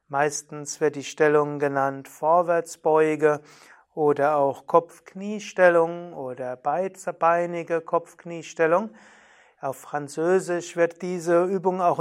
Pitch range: 150-180 Hz